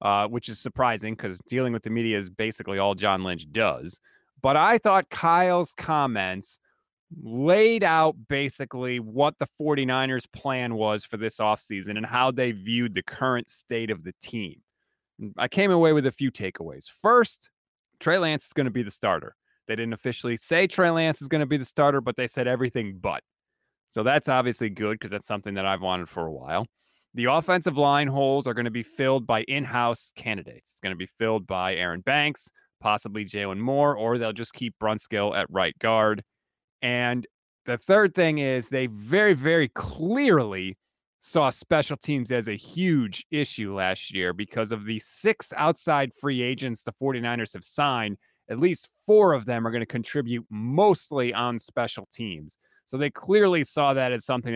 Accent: American